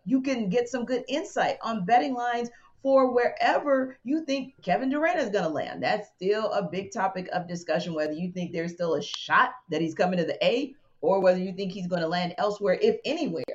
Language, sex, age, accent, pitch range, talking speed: English, female, 40-59, American, 160-215 Hz, 220 wpm